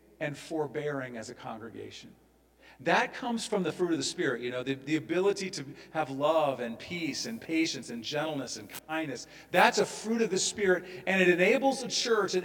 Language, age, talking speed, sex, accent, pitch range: English, 50-69, 200 wpm, male, American, 135-185 Hz